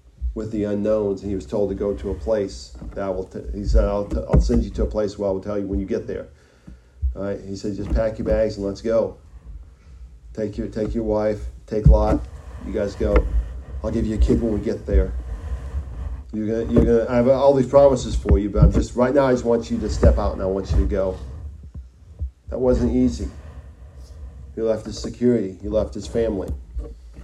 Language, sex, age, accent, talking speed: English, male, 40-59, American, 225 wpm